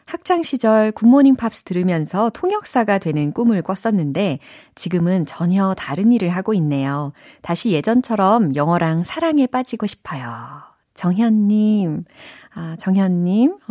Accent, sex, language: native, female, Korean